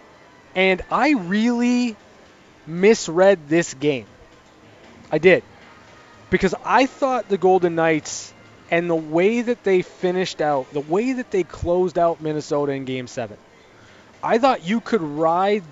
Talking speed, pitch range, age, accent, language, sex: 135 wpm, 155-195 Hz, 20-39, American, English, male